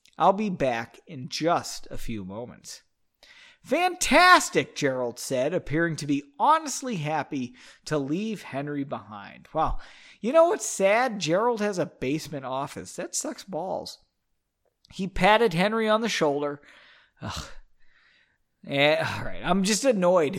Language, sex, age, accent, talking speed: English, male, 40-59, American, 135 wpm